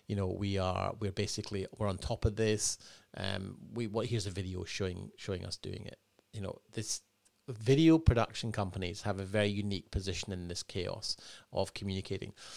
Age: 30-49